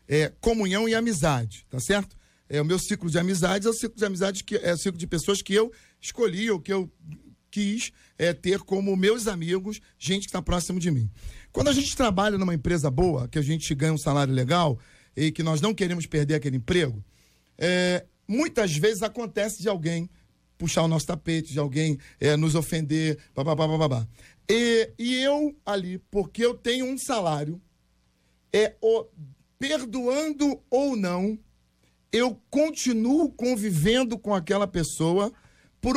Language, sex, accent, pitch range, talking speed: Portuguese, male, Brazilian, 155-235 Hz, 165 wpm